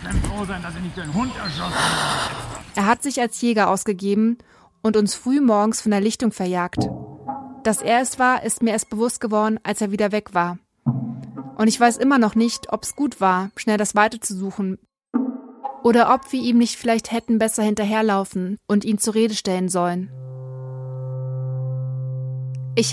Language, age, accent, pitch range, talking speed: German, 20-39, German, 185-230 Hz, 155 wpm